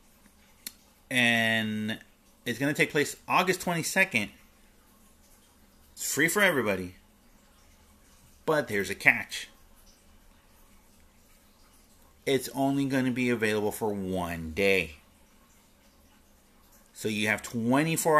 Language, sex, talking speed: English, male, 95 wpm